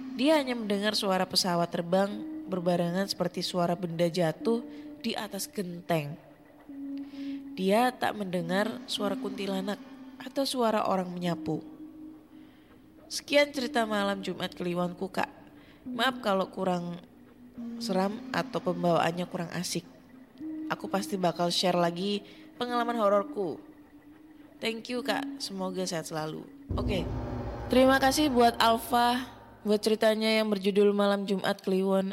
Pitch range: 180-255 Hz